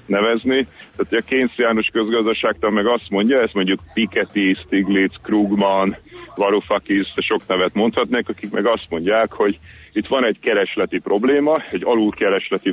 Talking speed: 140 wpm